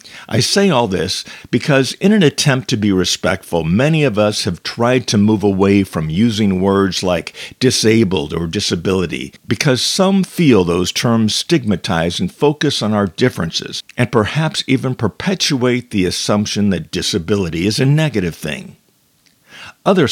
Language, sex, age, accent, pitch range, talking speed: English, male, 50-69, American, 100-135 Hz, 150 wpm